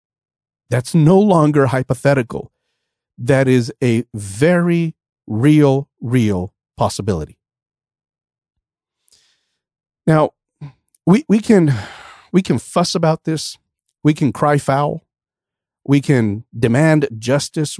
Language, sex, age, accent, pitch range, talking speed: English, male, 40-59, American, 115-155 Hz, 95 wpm